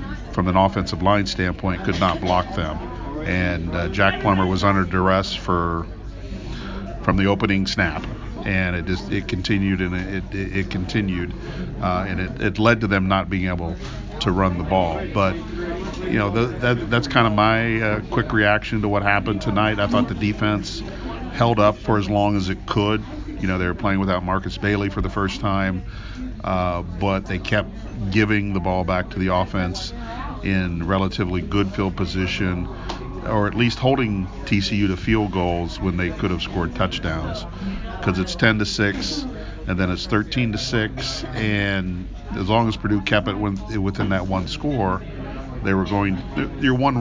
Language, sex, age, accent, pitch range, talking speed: English, male, 50-69, American, 90-105 Hz, 180 wpm